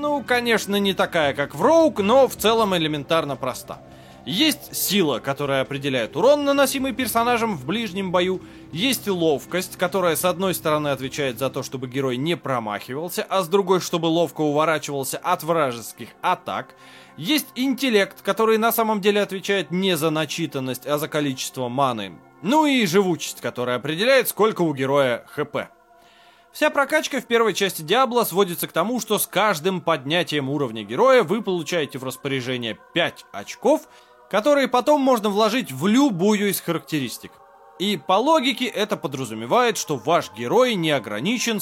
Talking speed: 155 wpm